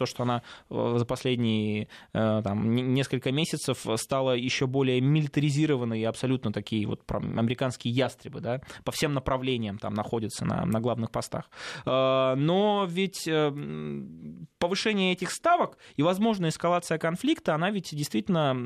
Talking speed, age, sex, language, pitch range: 120 wpm, 20-39, male, Russian, 120-155 Hz